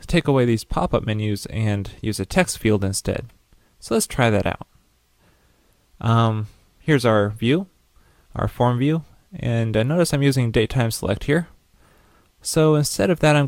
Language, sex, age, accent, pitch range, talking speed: English, male, 20-39, American, 105-130 Hz, 165 wpm